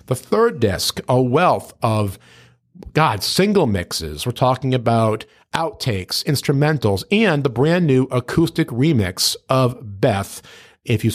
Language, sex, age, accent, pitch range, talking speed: English, male, 50-69, American, 105-130 Hz, 130 wpm